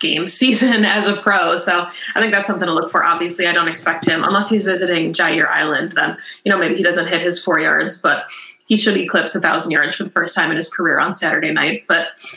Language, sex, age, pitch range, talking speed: English, female, 20-39, 175-215 Hz, 245 wpm